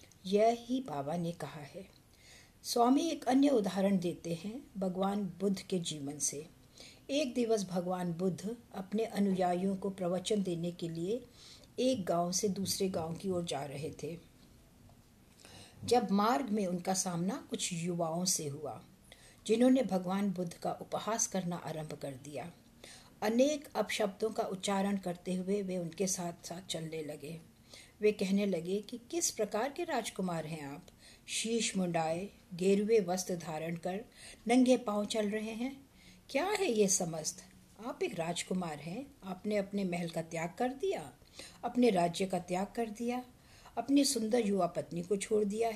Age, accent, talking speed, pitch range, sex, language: 60-79, Indian, 140 wpm, 175-225 Hz, female, English